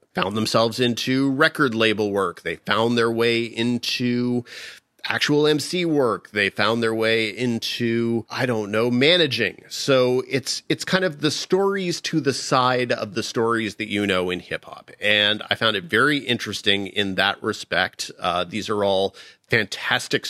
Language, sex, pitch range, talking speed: English, male, 105-130 Hz, 165 wpm